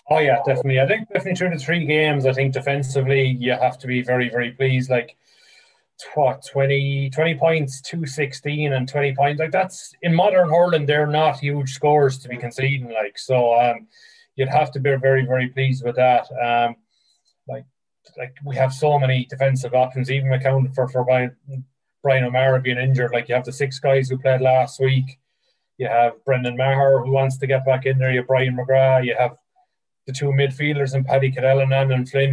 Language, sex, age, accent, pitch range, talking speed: English, male, 20-39, Irish, 130-140 Hz, 200 wpm